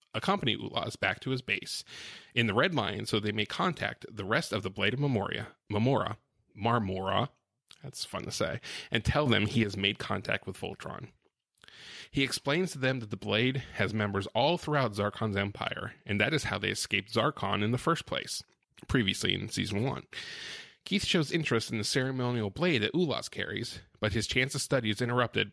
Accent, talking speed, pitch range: American, 190 wpm, 105-125 Hz